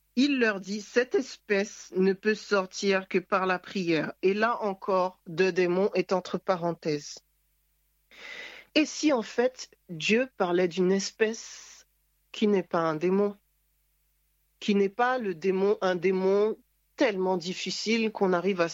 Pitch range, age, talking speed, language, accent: 165-215 Hz, 40-59, 145 wpm, French, French